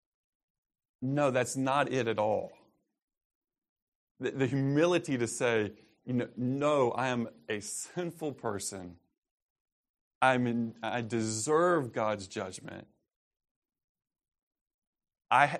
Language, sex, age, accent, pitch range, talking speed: English, male, 30-49, American, 115-150 Hz, 100 wpm